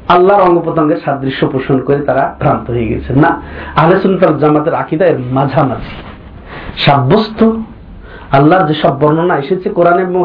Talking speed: 140 wpm